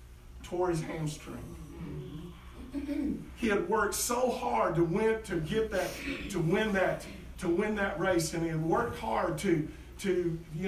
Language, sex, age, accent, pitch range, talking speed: English, male, 50-69, American, 150-200 Hz, 150 wpm